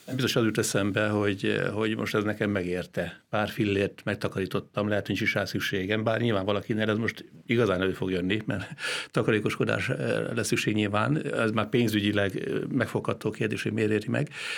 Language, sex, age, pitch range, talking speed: Hungarian, male, 60-79, 105-125 Hz, 160 wpm